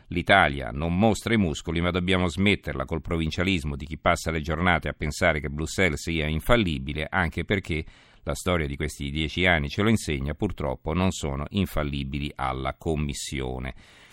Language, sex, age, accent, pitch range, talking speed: Italian, male, 50-69, native, 80-95 Hz, 160 wpm